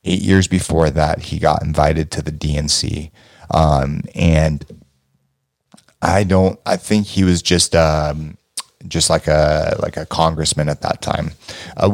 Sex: male